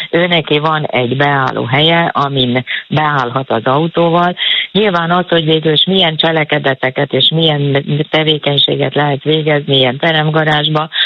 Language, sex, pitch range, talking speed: Hungarian, female, 130-155 Hz, 125 wpm